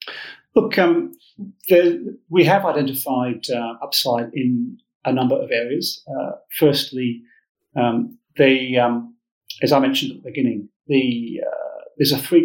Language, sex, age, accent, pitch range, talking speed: English, male, 40-59, British, 120-150 Hz, 140 wpm